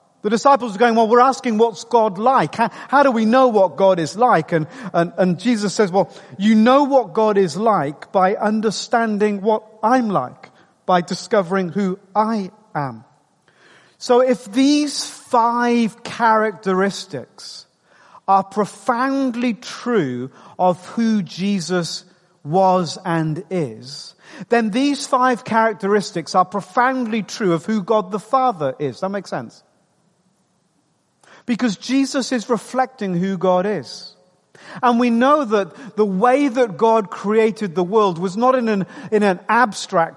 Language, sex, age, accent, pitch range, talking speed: English, male, 40-59, British, 185-240 Hz, 145 wpm